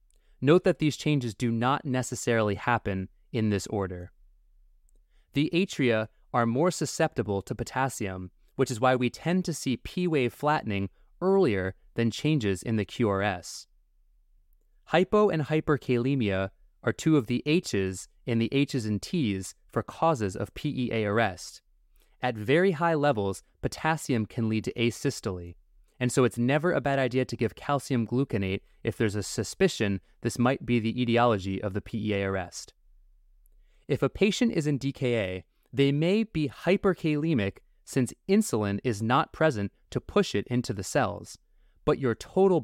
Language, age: English, 20-39